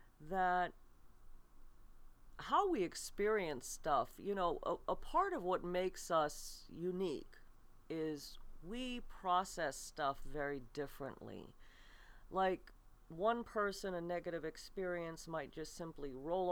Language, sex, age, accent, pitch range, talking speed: English, female, 40-59, American, 150-190 Hz, 115 wpm